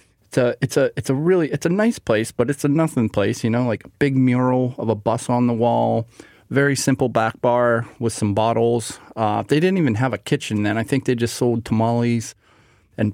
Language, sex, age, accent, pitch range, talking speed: English, male, 30-49, American, 110-130 Hz, 230 wpm